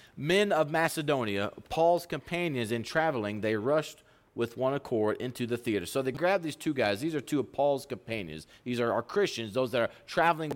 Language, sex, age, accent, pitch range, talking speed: English, male, 30-49, American, 120-155 Hz, 200 wpm